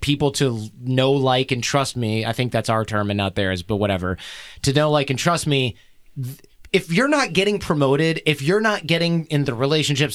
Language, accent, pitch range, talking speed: English, American, 125-170 Hz, 205 wpm